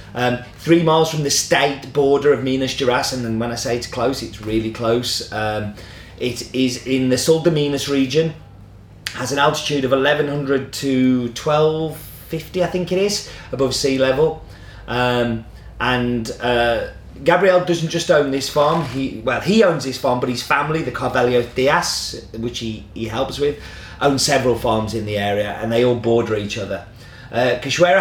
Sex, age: male, 30-49